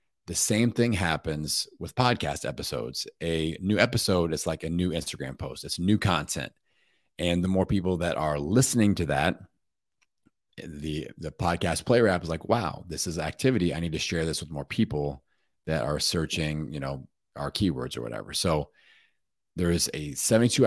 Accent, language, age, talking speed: American, English, 30-49, 175 wpm